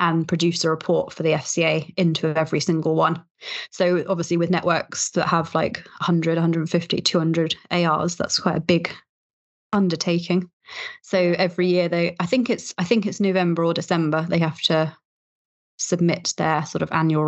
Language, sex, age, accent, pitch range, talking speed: English, female, 20-39, British, 165-180 Hz, 165 wpm